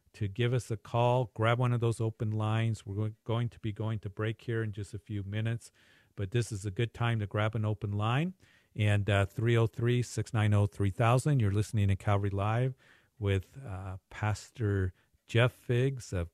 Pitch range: 100-115 Hz